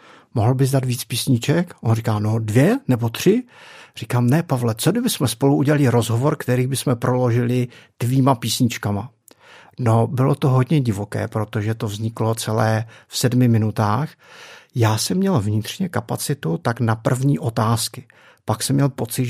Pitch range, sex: 110-140 Hz, male